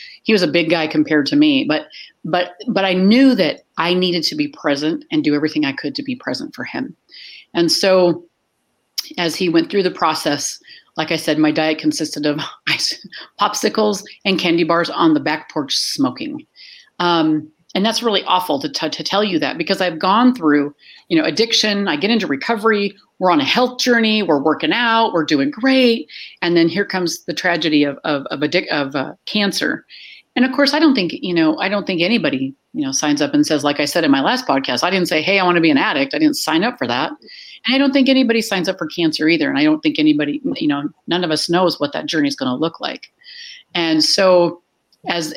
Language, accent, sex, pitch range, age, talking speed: English, American, female, 165-270 Hz, 40-59, 230 wpm